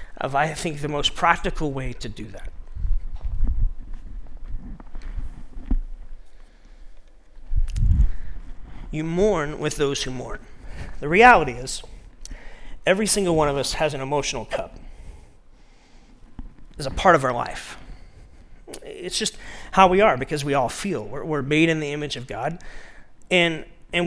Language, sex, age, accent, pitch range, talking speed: English, male, 40-59, American, 130-180 Hz, 130 wpm